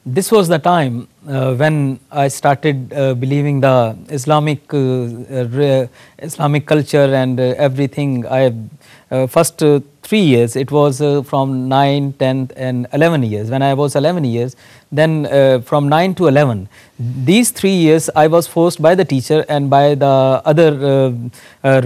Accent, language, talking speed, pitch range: Indian, English, 165 wpm, 135-165 Hz